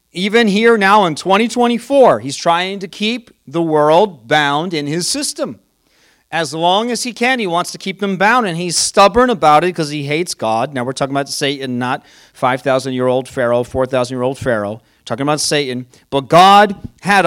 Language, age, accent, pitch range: English, 40-59, American, 150-205 Hz